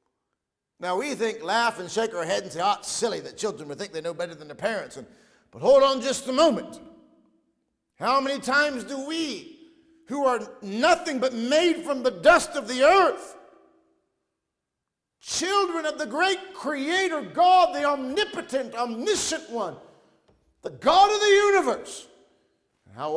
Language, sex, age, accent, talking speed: English, male, 50-69, American, 160 wpm